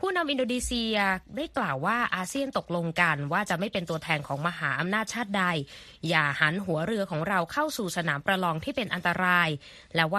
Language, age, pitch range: Thai, 20-39, 165-210 Hz